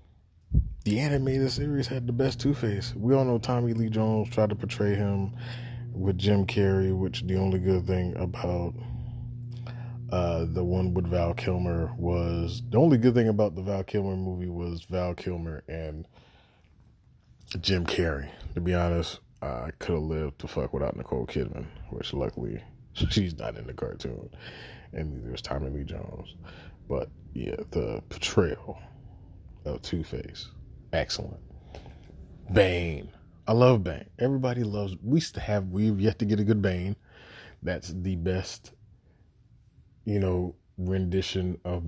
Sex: male